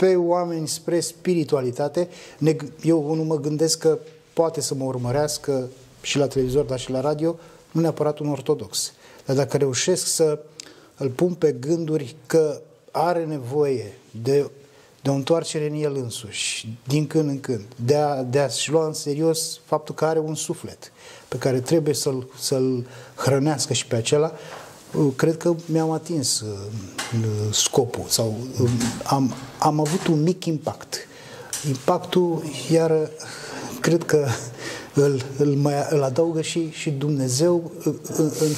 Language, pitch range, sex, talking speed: Romanian, 130-160 Hz, male, 140 wpm